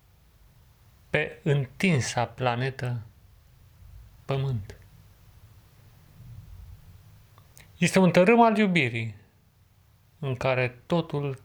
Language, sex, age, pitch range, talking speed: Romanian, male, 30-49, 95-130 Hz, 65 wpm